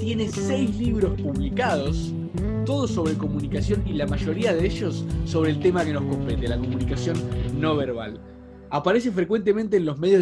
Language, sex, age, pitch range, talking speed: Spanish, male, 20-39, 145-205 Hz, 160 wpm